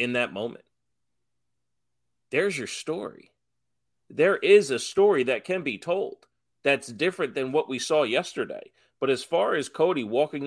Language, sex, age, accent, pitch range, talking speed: English, male, 30-49, American, 110-150 Hz, 155 wpm